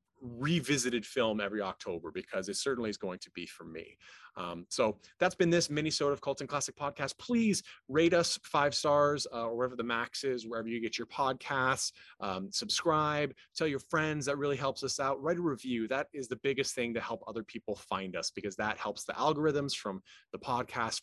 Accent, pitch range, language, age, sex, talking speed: American, 115-155 Hz, English, 30-49, male, 205 wpm